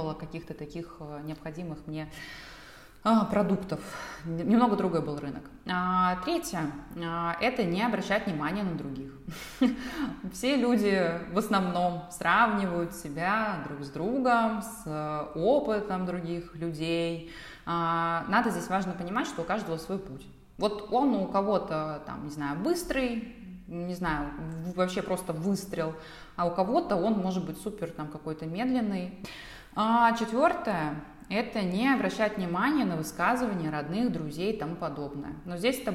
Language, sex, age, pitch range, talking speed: Russian, female, 20-39, 160-215 Hz, 125 wpm